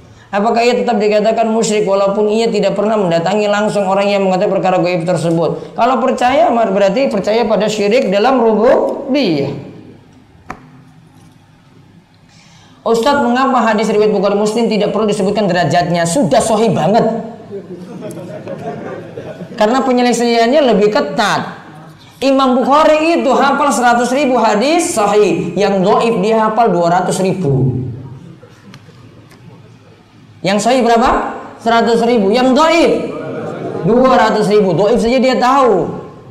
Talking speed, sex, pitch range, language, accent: 115 wpm, female, 180-245 Hz, Indonesian, native